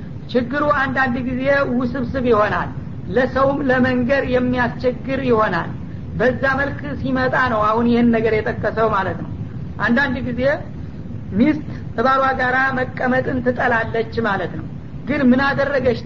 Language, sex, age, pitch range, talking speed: Amharic, female, 50-69, 240-270 Hz, 115 wpm